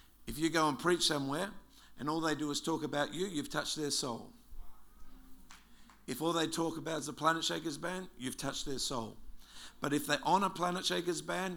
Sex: male